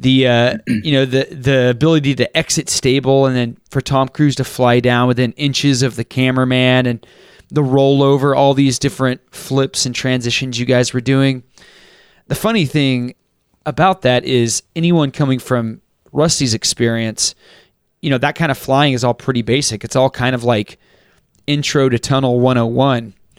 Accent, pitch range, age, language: American, 120-140 Hz, 30-49, English